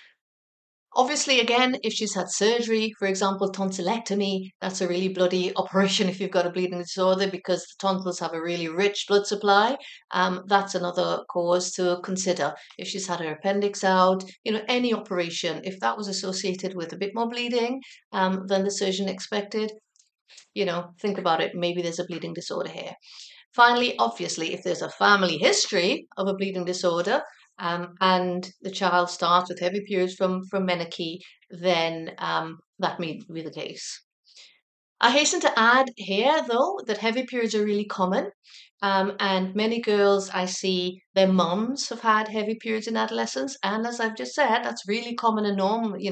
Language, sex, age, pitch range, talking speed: English, female, 50-69, 180-215 Hz, 175 wpm